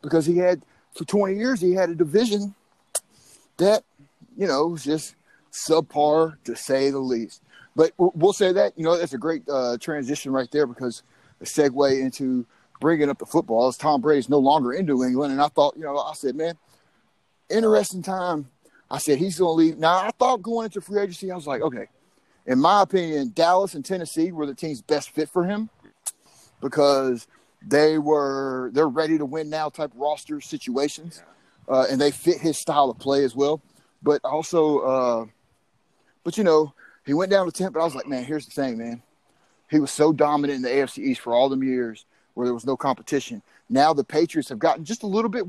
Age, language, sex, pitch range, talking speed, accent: 30-49, English, male, 135-180 Hz, 205 wpm, American